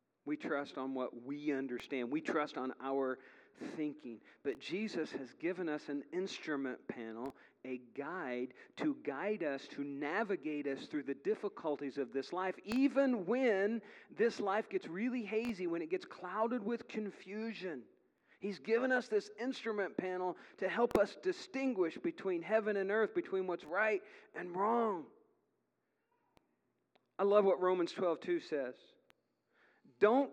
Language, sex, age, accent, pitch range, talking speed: English, male, 40-59, American, 160-225 Hz, 145 wpm